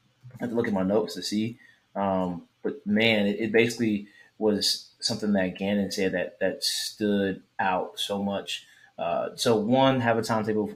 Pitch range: 95-110 Hz